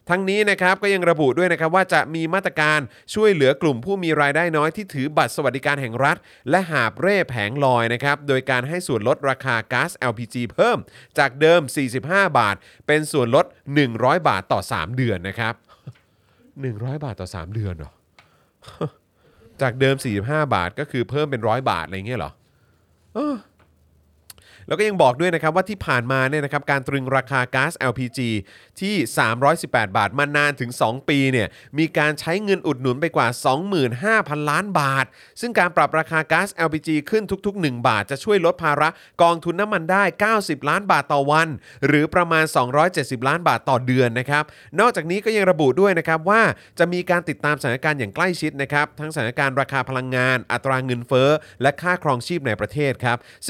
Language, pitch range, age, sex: Thai, 125-170 Hz, 30-49, male